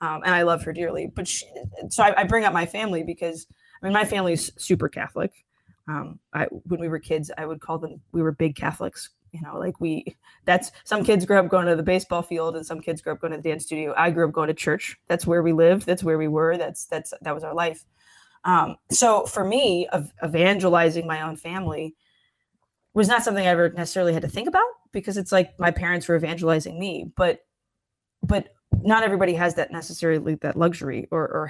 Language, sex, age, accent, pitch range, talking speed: English, female, 20-39, American, 160-180 Hz, 225 wpm